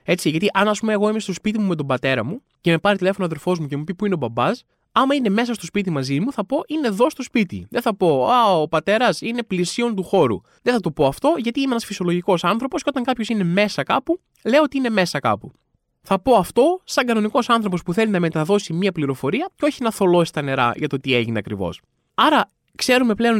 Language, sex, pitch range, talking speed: Greek, male, 150-230 Hz, 250 wpm